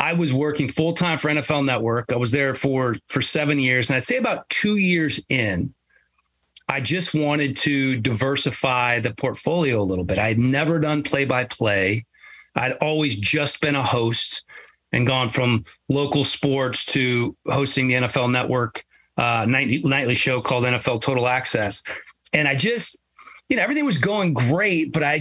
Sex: male